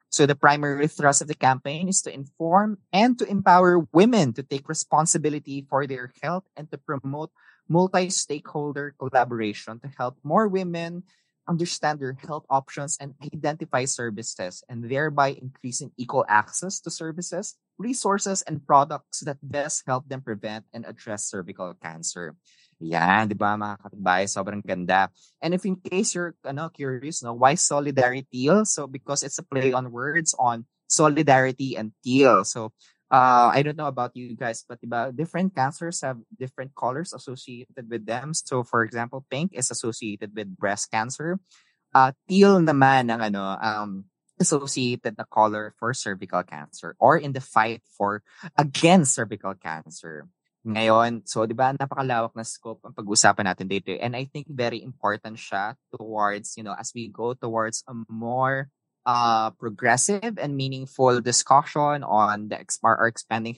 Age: 20-39